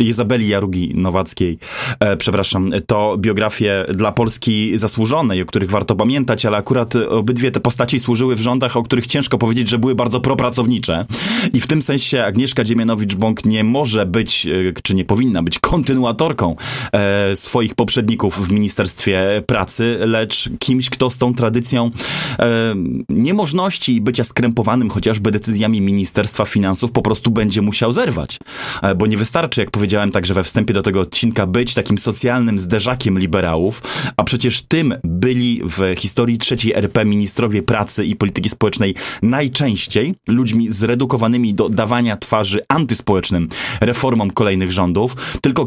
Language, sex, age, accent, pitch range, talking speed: Polish, male, 20-39, native, 105-125 Hz, 140 wpm